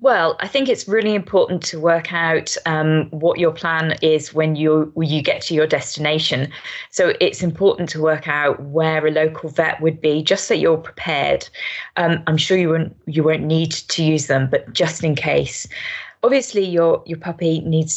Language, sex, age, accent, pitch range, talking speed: English, female, 20-39, British, 150-165 Hz, 195 wpm